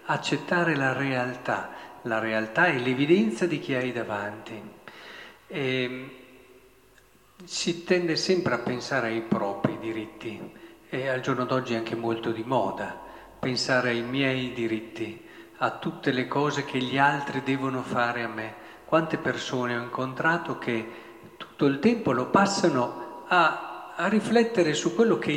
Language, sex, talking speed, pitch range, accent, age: Italian, male, 140 wpm, 120-165 Hz, native, 50-69